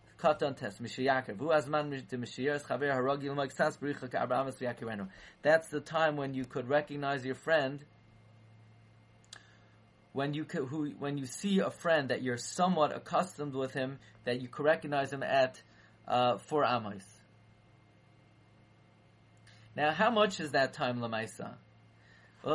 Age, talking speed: 30-49, 105 wpm